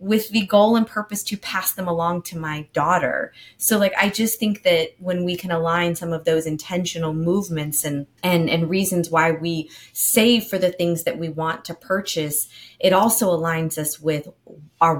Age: 20-39